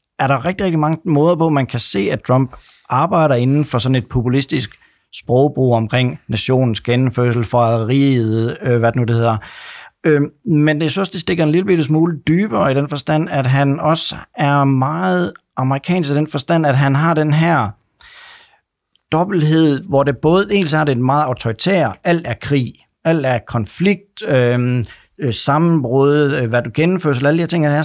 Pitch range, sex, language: 125-160 Hz, male, Danish